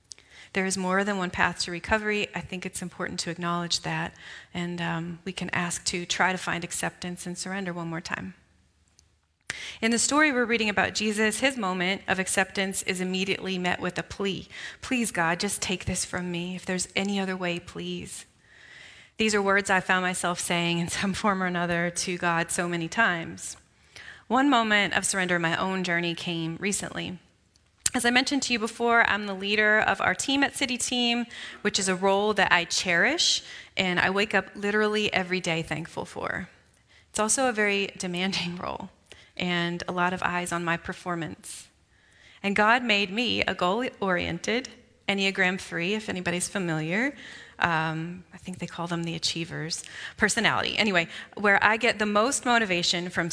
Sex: female